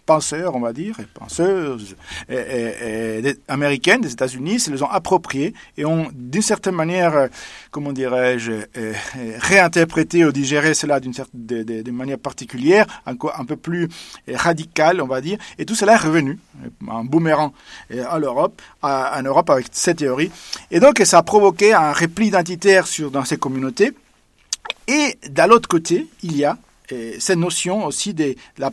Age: 40-59